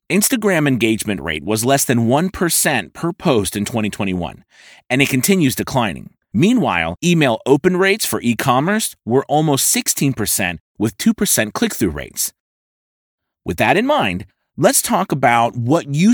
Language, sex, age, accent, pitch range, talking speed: English, male, 30-49, American, 110-160 Hz, 140 wpm